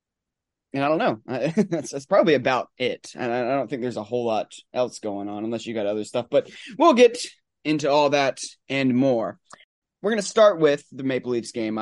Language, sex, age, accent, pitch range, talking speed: English, male, 20-39, American, 125-170 Hz, 220 wpm